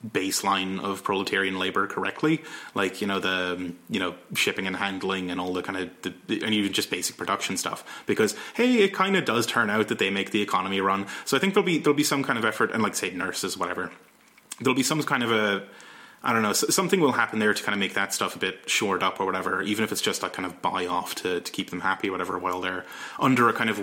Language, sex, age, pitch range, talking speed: English, male, 30-49, 95-120 Hz, 260 wpm